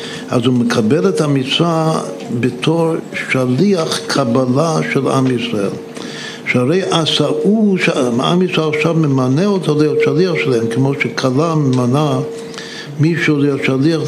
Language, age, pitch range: Hebrew, 60-79, 125-165 Hz